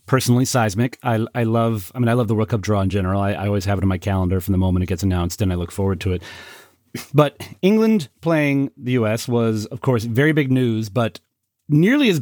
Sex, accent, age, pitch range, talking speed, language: male, American, 30-49, 100-135 Hz, 240 wpm, English